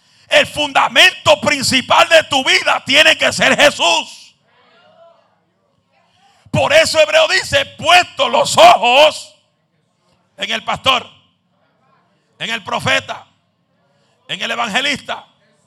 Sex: male